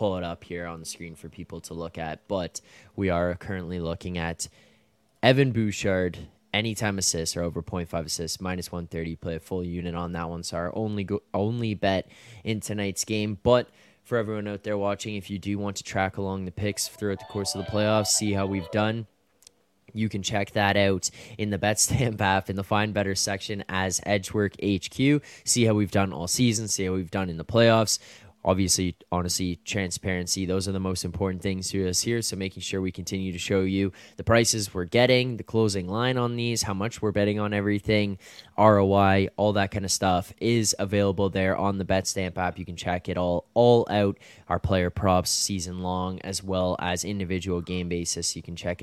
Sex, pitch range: male, 90-105 Hz